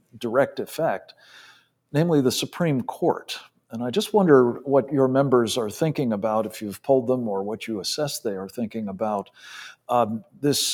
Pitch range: 120-155 Hz